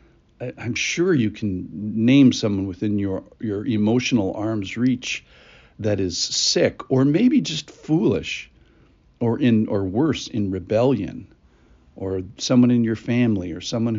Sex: male